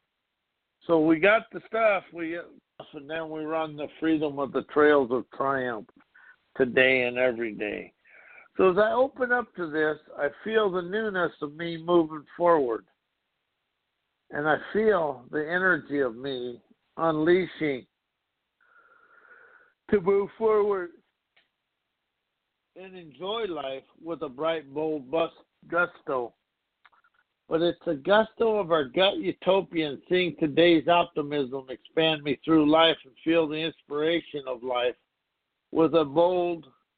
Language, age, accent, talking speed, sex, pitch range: English, 60-79, American, 130 wpm, male, 145-190 Hz